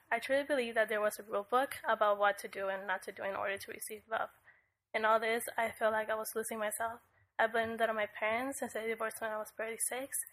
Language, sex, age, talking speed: English, female, 10-29, 265 wpm